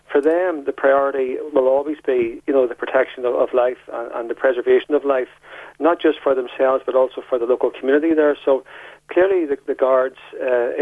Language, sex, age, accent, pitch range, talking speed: English, male, 40-59, Irish, 130-155 Hz, 195 wpm